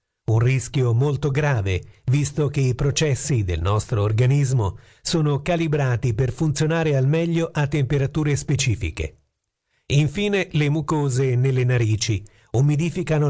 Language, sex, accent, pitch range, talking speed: Italian, male, native, 115-150 Hz, 115 wpm